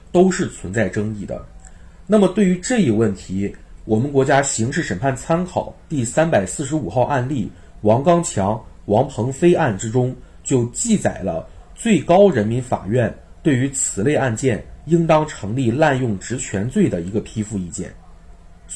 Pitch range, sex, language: 100-140 Hz, male, Chinese